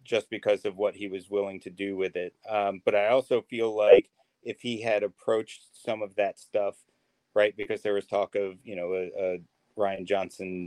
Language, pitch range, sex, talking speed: English, 95-115 Hz, male, 210 wpm